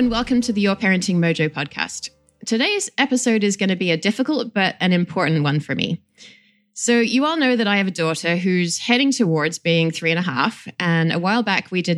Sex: female